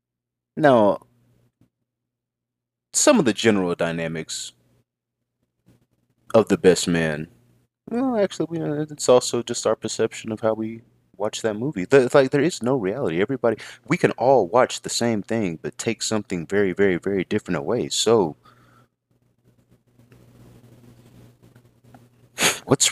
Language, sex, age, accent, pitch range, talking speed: English, male, 30-49, American, 80-120 Hz, 120 wpm